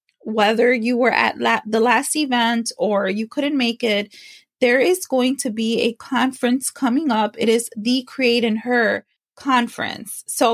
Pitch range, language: 220-260 Hz, English